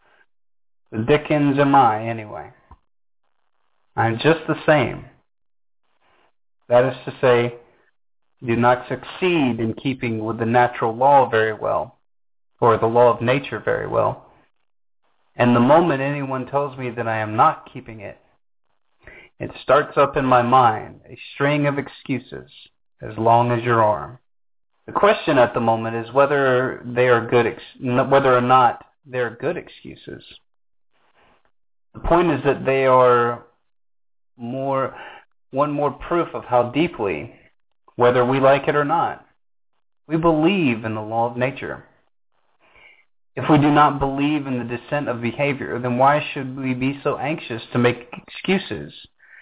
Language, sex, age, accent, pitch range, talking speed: English, male, 30-49, American, 120-150 Hz, 150 wpm